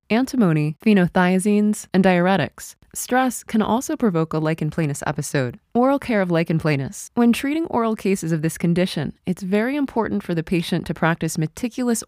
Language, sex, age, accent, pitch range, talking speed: English, female, 20-39, American, 170-225 Hz, 165 wpm